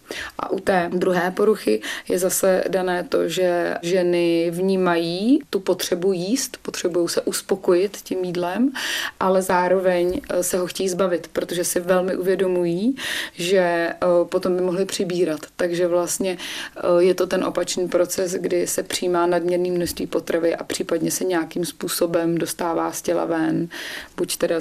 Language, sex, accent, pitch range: Czech, female, native, 170-190 Hz